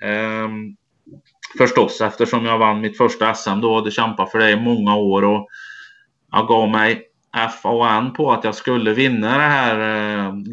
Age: 30-49